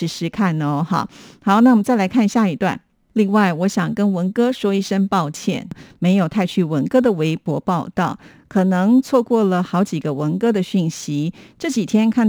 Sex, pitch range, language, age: female, 170-215 Hz, Chinese, 50-69